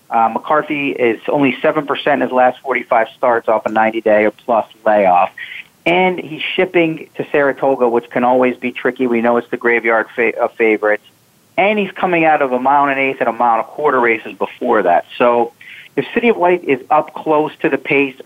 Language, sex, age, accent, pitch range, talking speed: English, male, 40-59, American, 115-135 Hz, 205 wpm